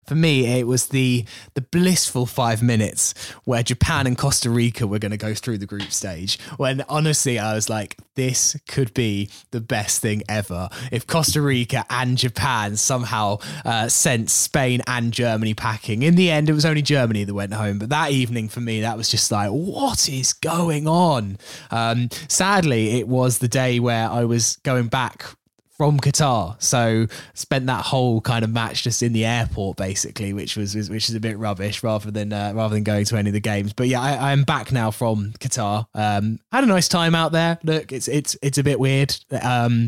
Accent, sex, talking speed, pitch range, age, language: British, male, 205 wpm, 110-130 Hz, 20-39, English